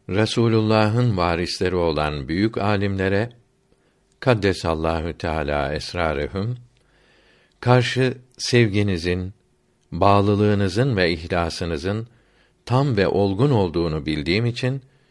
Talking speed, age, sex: 75 wpm, 60-79, male